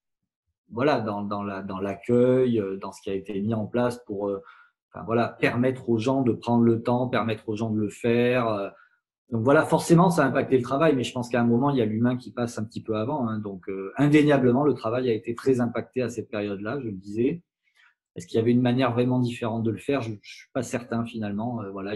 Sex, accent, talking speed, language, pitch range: male, French, 245 wpm, French, 110-140 Hz